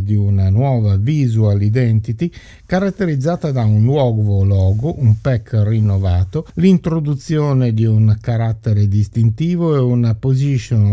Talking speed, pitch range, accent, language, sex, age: 115 wpm, 105-140 Hz, native, Italian, male, 50-69